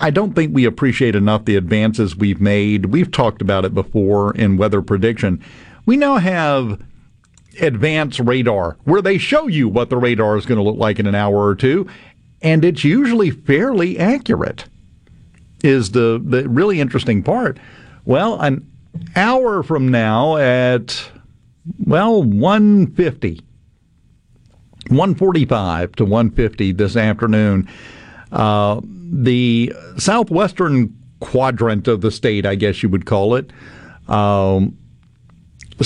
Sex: male